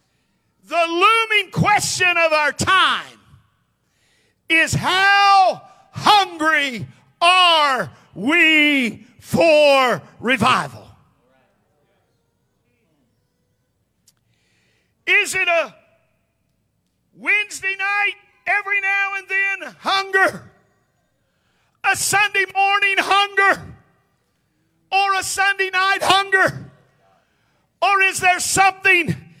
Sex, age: male, 50-69